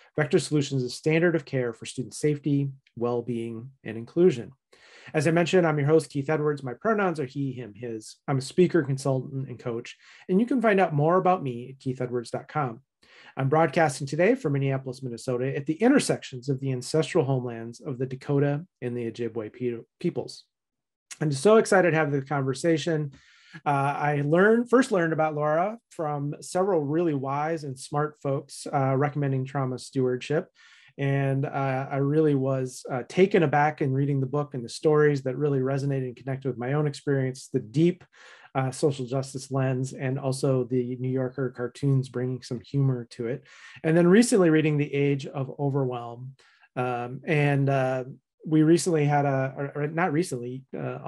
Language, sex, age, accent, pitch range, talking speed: English, male, 30-49, American, 130-155 Hz, 175 wpm